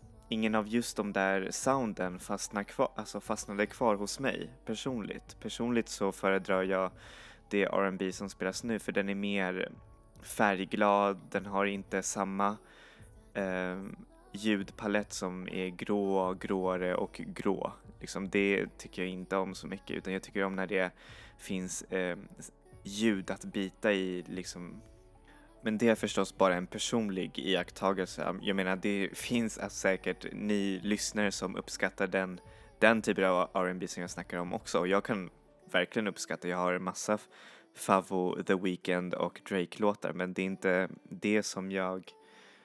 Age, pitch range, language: 20-39, 95-105 Hz, Swedish